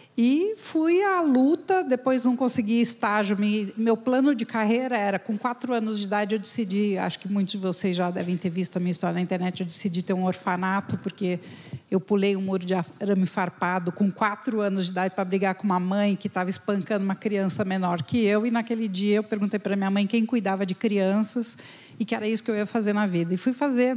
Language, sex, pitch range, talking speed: Portuguese, female, 200-255 Hz, 225 wpm